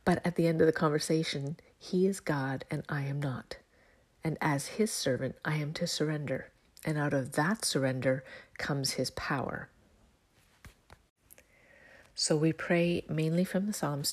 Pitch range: 140-170 Hz